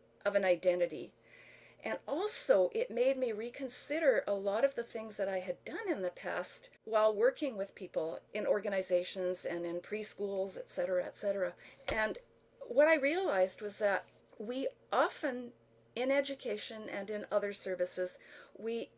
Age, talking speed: 50-69, 155 wpm